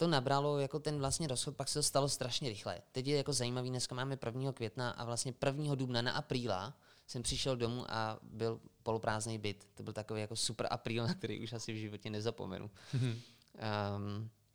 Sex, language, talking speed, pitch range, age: male, Czech, 195 wpm, 115-140 Hz, 20-39